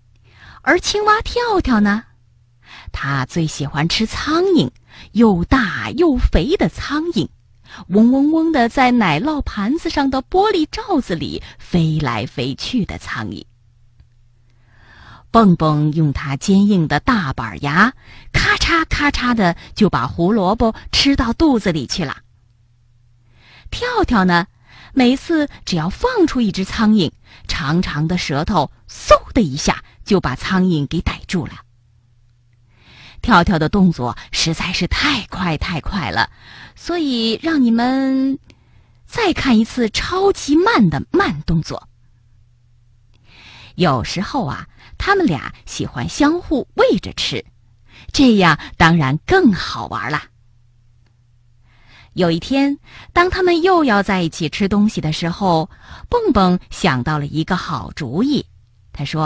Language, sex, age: Chinese, female, 30-49